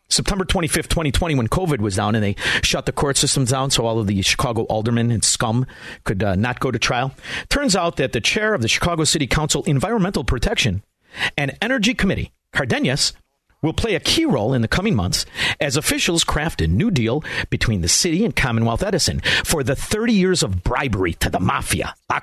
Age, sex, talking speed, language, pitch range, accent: 50-69, male, 200 wpm, English, 115-170 Hz, American